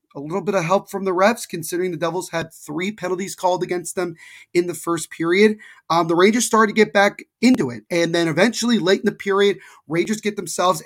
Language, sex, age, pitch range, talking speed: English, male, 30-49, 155-195 Hz, 220 wpm